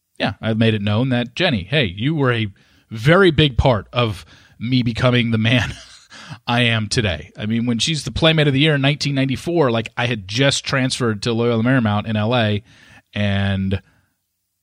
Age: 30-49